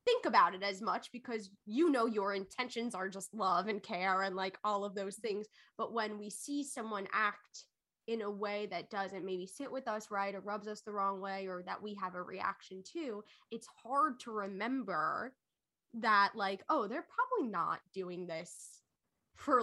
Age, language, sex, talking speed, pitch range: 10-29, English, female, 195 wpm, 195-260 Hz